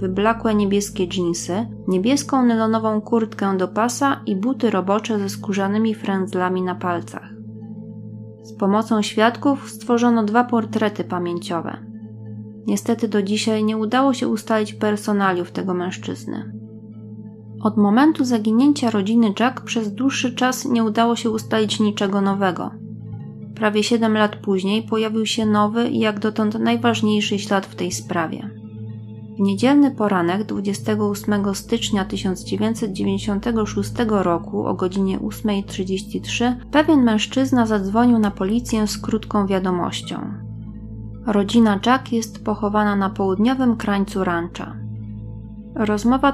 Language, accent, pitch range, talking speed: Polish, native, 180-230 Hz, 115 wpm